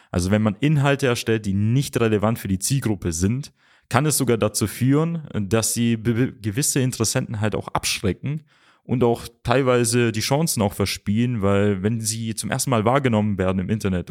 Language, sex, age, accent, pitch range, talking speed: German, male, 30-49, German, 100-125 Hz, 175 wpm